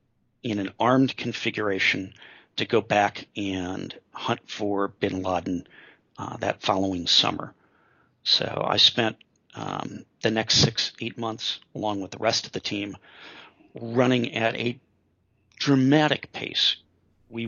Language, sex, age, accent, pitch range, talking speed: English, male, 40-59, American, 95-110 Hz, 130 wpm